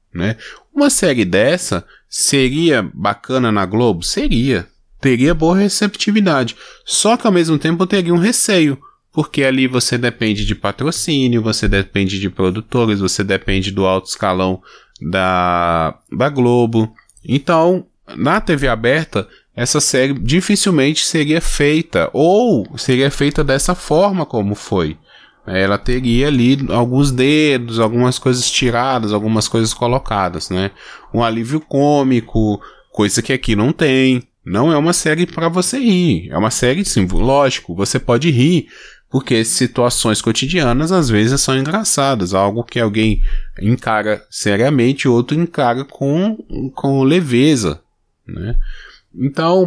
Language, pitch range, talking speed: Portuguese, 110-155 Hz, 130 wpm